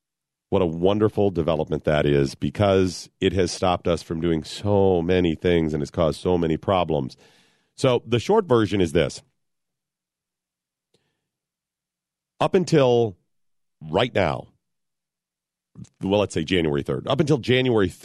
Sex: male